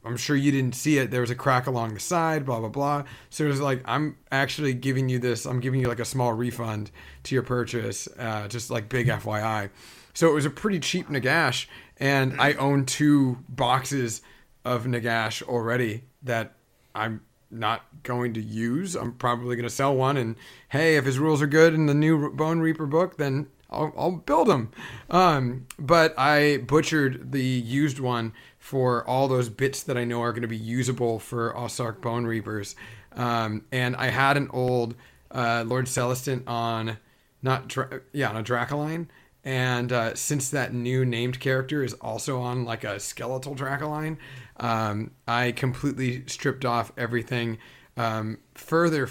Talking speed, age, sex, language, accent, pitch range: 180 wpm, 30-49, male, English, American, 120-140 Hz